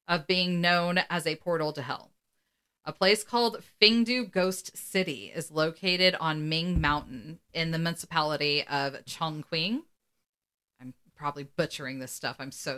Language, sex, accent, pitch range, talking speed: English, female, American, 150-195 Hz, 145 wpm